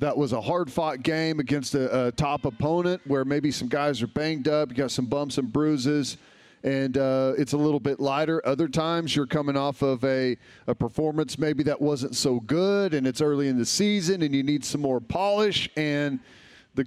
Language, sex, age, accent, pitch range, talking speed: English, male, 40-59, American, 135-160 Hz, 205 wpm